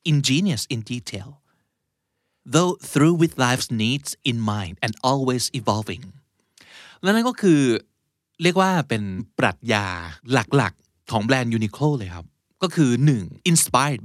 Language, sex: Thai, male